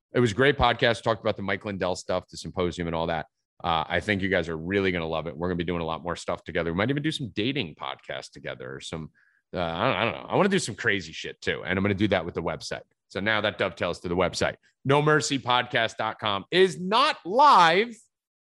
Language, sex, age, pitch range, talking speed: English, male, 30-49, 100-140 Hz, 260 wpm